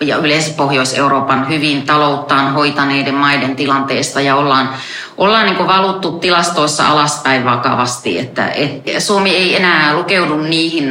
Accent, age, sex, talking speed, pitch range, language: native, 30-49, female, 125 wpm, 140-180 Hz, Finnish